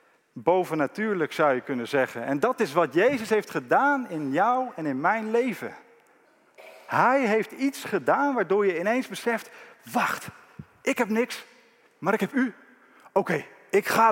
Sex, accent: male, Dutch